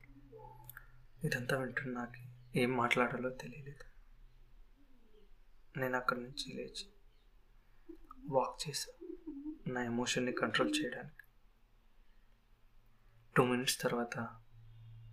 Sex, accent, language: male, native, Telugu